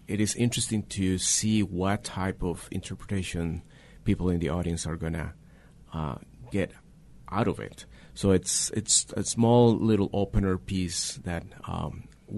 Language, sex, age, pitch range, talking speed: English, male, 30-49, 85-100 Hz, 145 wpm